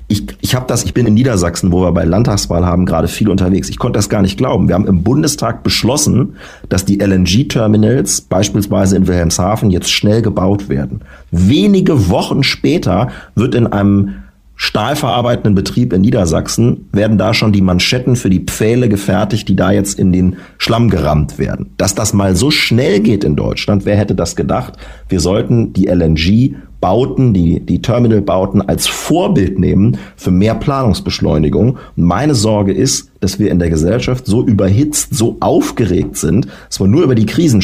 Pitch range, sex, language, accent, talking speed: 95-115 Hz, male, German, German, 175 wpm